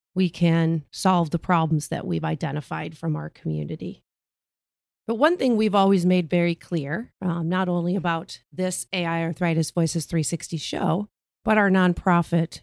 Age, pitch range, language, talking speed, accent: 40-59, 160-190 Hz, English, 150 wpm, American